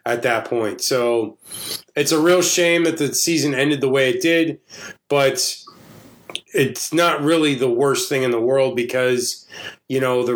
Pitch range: 125-150 Hz